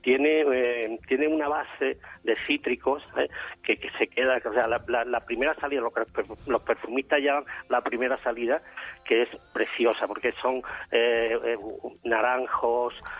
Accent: Spanish